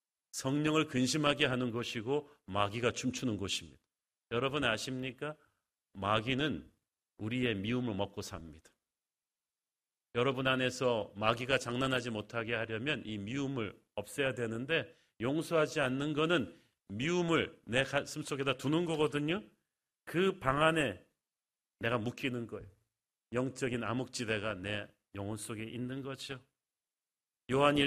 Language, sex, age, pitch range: Korean, male, 40-59, 120-165 Hz